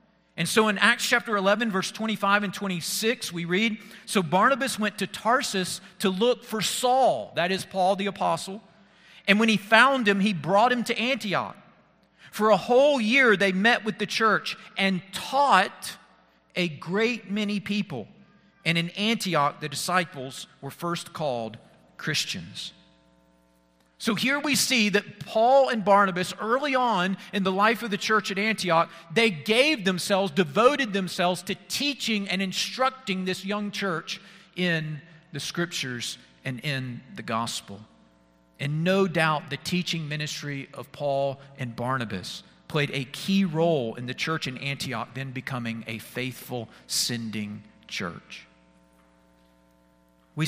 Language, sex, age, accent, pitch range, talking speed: English, male, 40-59, American, 145-210 Hz, 145 wpm